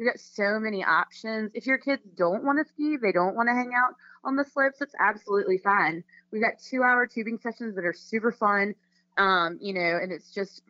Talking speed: 220 wpm